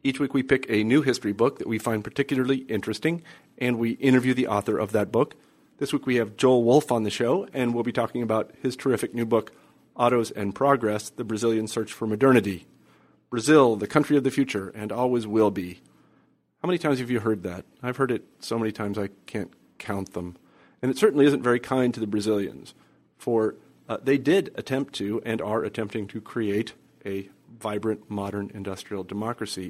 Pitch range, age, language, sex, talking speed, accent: 105-130 Hz, 40-59, English, male, 200 wpm, American